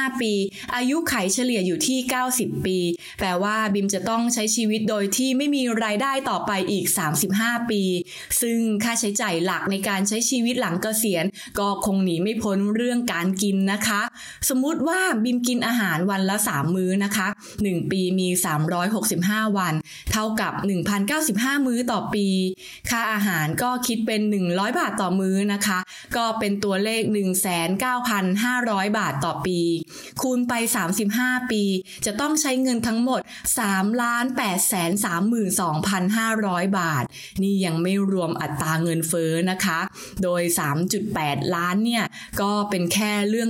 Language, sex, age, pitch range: English, female, 20-39, 190-245 Hz